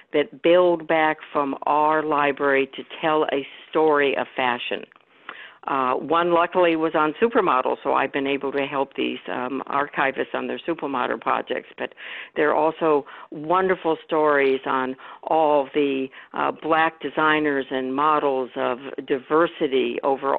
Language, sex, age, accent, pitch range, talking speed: English, female, 60-79, American, 140-155 Hz, 140 wpm